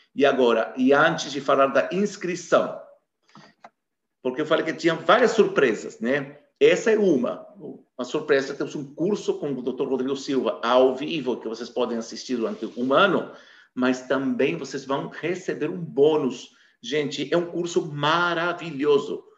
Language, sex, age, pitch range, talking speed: Portuguese, male, 50-69, 140-195 Hz, 155 wpm